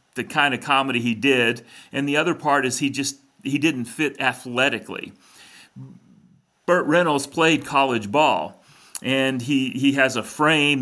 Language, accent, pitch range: English, American, 125-145 Hz